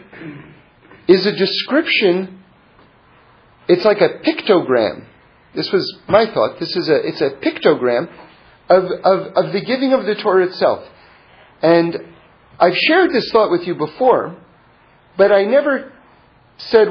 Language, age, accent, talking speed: English, 40-59, American, 135 wpm